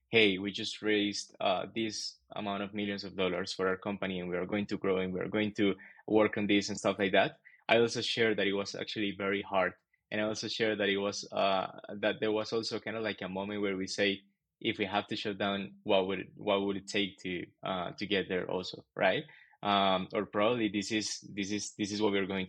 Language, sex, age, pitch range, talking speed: English, male, 20-39, 100-110 Hz, 250 wpm